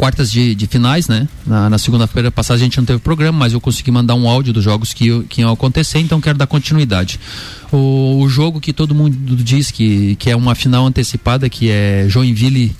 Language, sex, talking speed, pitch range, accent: Portuguese, male, 210 wpm, 120-150 Hz, Brazilian